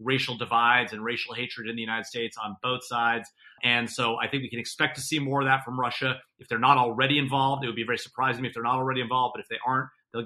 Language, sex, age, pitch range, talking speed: English, male, 30-49, 130-145 Hz, 270 wpm